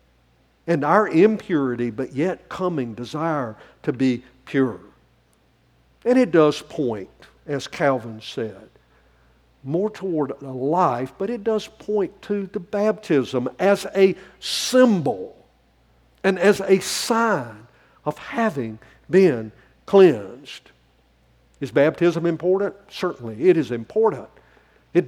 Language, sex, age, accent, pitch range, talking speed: English, male, 60-79, American, 115-195 Hz, 110 wpm